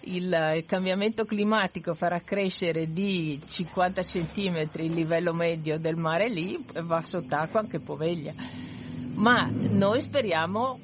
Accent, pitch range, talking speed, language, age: native, 170-225 Hz, 120 wpm, Italian, 50-69